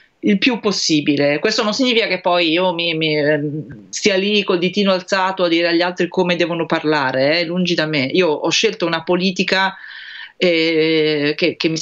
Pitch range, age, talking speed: 160-185 Hz, 30-49, 185 wpm